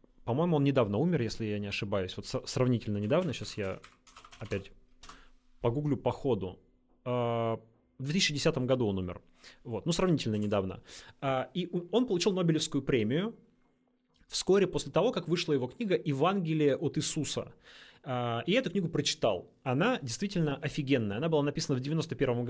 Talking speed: 145 wpm